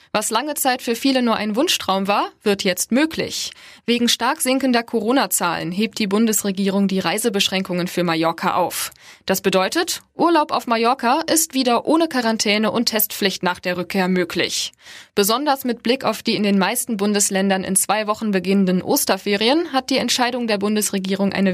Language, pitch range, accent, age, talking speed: German, 195-245 Hz, German, 20-39, 165 wpm